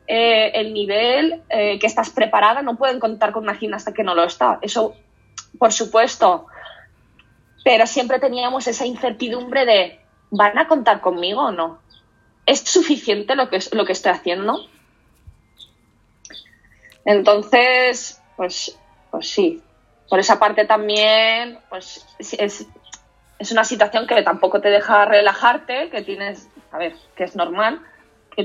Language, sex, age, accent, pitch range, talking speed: Spanish, female, 20-39, Spanish, 205-245 Hz, 140 wpm